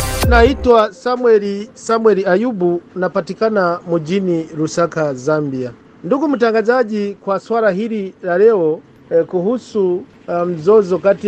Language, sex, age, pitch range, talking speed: Swahili, male, 50-69, 160-220 Hz, 105 wpm